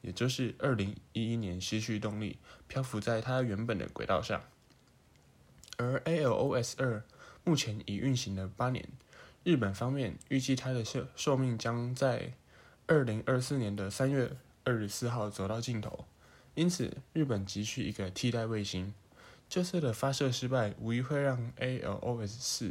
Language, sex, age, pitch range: English, male, 10-29, 105-130 Hz